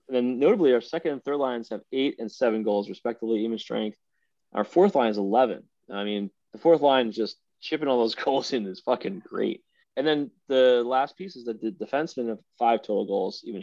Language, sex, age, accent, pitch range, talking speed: English, male, 20-39, American, 110-140 Hz, 220 wpm